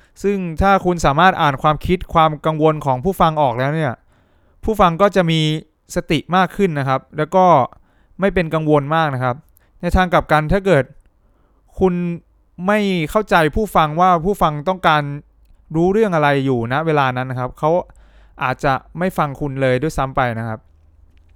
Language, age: English, 20-39